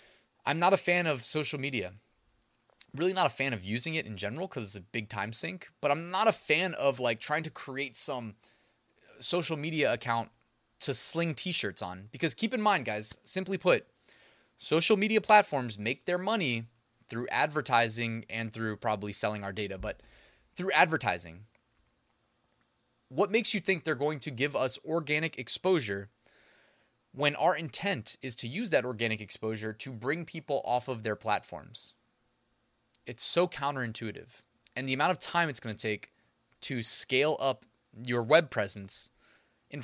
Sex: male